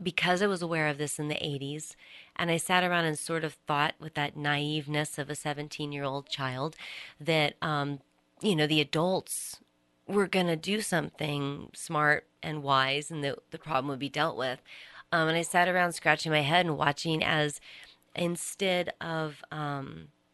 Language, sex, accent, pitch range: English, female, American, 140-165 Hz